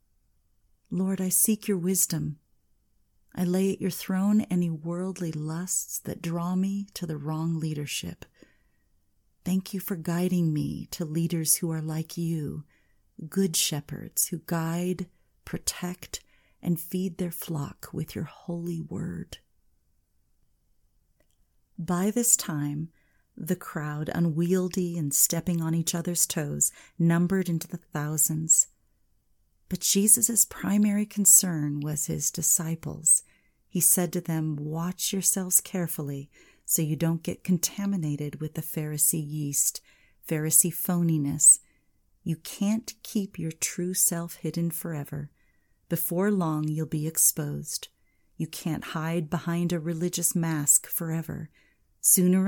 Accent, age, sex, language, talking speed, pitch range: American, 40-59, female, English, 120 wpm, 155-180 Hz